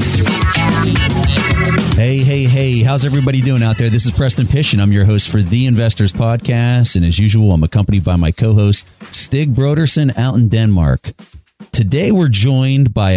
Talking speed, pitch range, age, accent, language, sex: 175 wpm, 95-130 Hz, 30-49, American, English, male